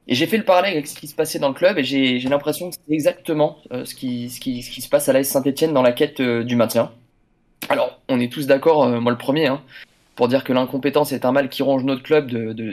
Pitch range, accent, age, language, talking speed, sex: 125-160 Hz, French, 20-39, French, 290 wpm, male